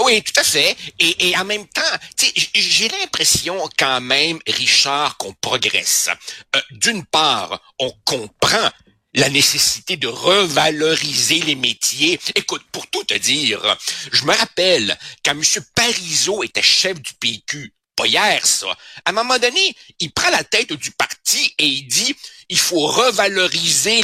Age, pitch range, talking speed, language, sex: 60-79, 150-215 Hz, 150 wpm, French, male